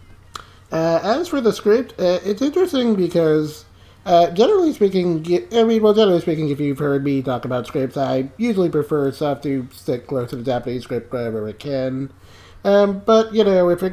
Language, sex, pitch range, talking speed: English, male, 125-170 Hz, 190 wpm